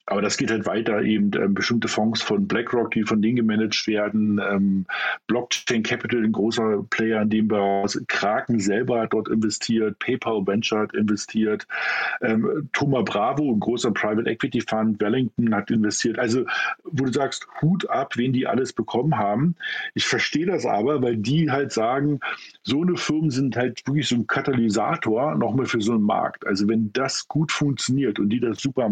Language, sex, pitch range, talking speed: German, male, 110-140 Hz, 180 wpm